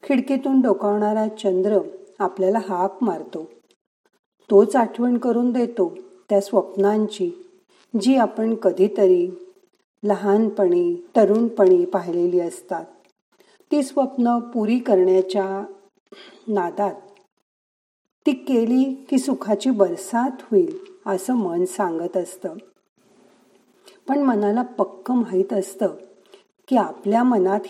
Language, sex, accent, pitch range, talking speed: Marathi, female, native, 195-255 Hz, 90 wpm